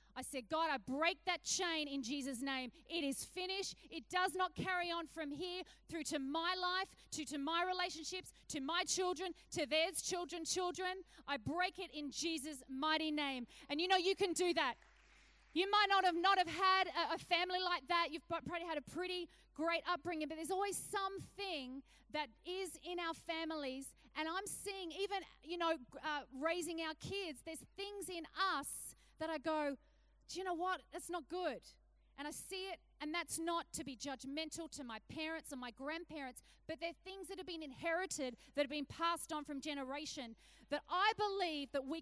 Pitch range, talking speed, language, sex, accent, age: 280-350 Hz, 195 wpm, English, female, Australian, 30-49